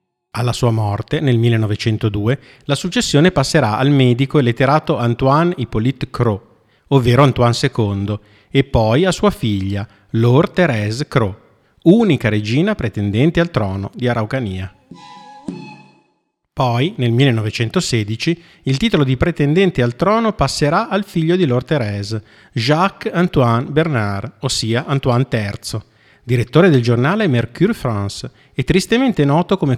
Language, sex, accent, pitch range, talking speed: Italian, male, native, 110-160 Hz, 125 wpm